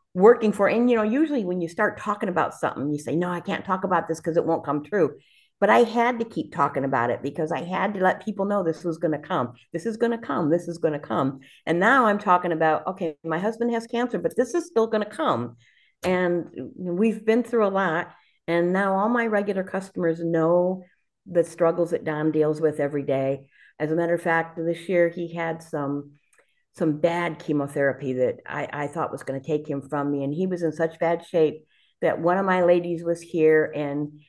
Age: 50-69